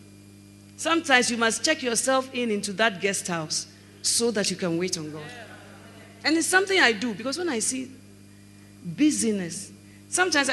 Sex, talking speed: female, 160 wpm